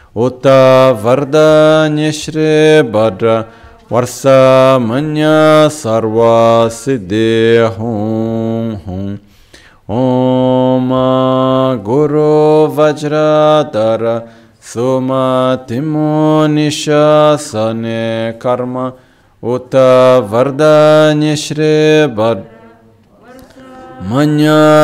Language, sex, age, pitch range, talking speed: Italian, male, 30-49, 115-150 Hz, 45 wpm